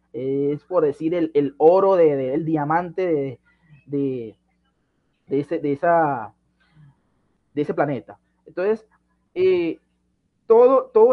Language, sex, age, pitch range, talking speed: Spanish, male, 20-39, 150-195 Hz, 125 wpm